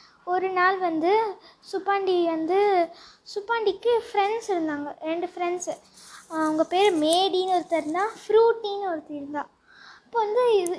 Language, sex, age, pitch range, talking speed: Tamil, female, 20-39, 335-425 Hz, 115 wpm